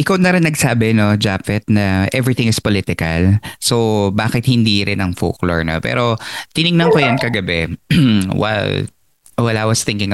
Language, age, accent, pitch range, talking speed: Filipino, 20-39, native, 100-130 Hz, 160 wpm